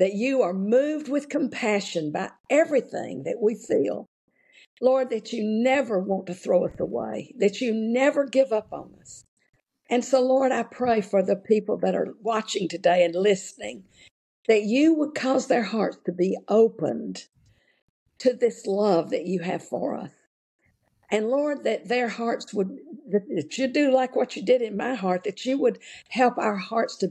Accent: American